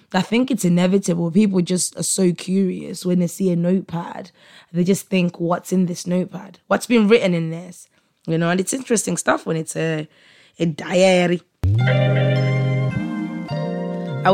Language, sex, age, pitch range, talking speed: English, female, 20-39, 165-195 Hz, 160 wpm